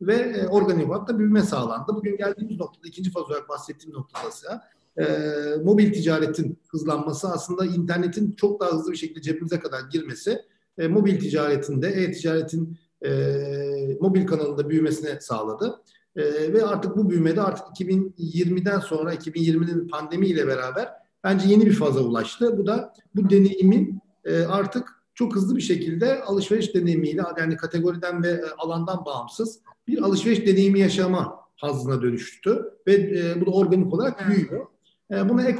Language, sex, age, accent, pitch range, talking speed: Turkish, male, 50-69, native, 160-205 Hz, 145 wpm